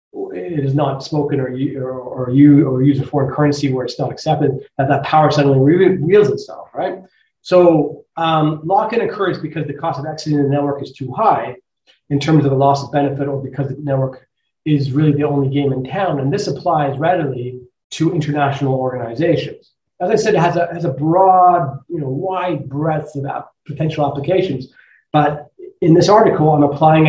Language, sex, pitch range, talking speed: English, male, 135-160 Hz, 195 wpm